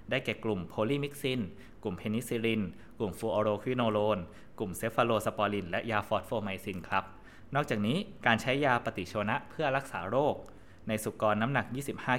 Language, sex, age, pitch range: Thai, male, 20-39, 100-115 Hz